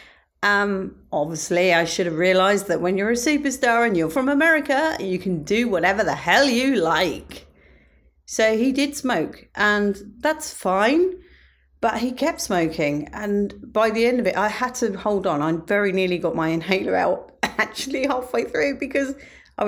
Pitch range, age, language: 160-230 Hz, 40-59, English